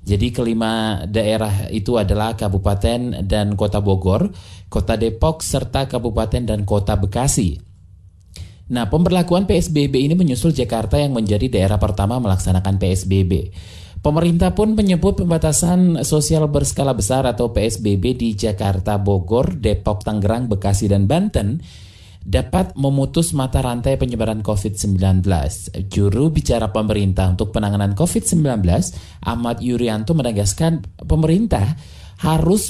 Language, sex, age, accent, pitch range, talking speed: Indonesian, male, 20-39, native, 95-130 Hz, 115 wpm